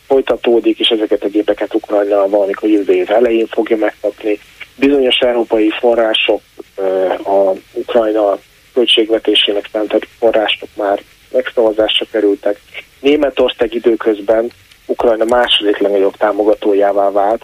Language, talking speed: Hungarian, 105 wpm